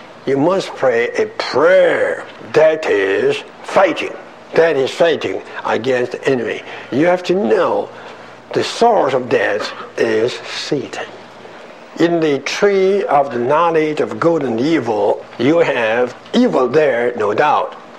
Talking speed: 135 wpm